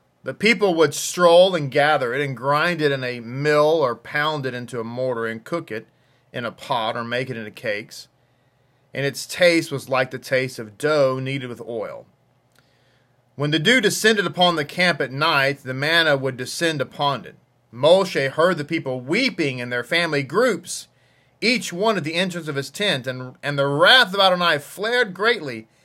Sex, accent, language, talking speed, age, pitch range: male, American, English, 190 wpm, 40-59, 130-170 Hz